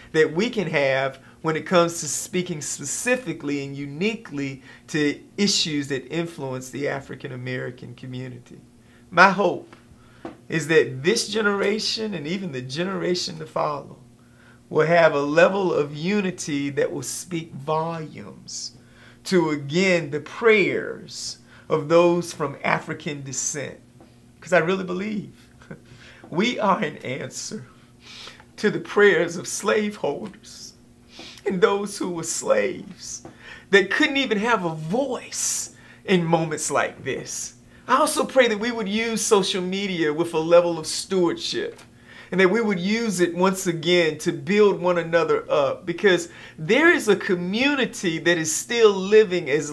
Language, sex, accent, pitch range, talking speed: English, male, American, 150-205 Hz, 140 wpm